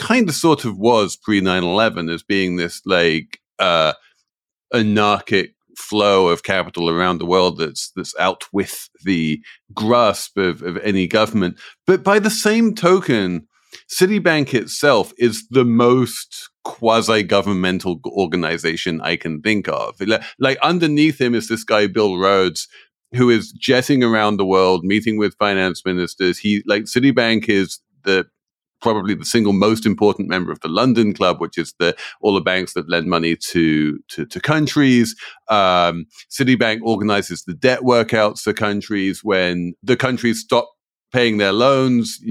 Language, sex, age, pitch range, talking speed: English, male, 40-59, 90-120 Hz, 150 wpm